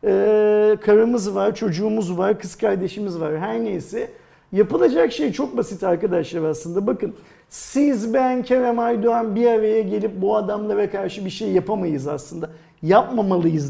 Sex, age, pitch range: male, 50-69, 180-260 Hz